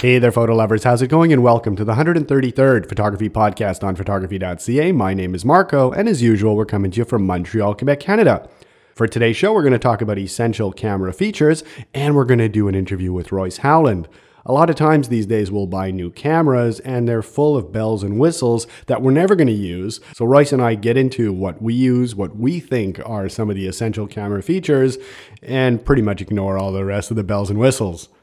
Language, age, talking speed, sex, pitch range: English, 40-59, 225 wpm, male, 100-130 Hz